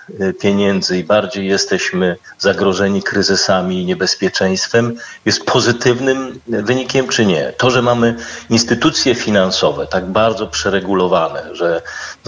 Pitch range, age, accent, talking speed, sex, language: 95-115 Hz, 40-59, native, 110 wpm, male, Polish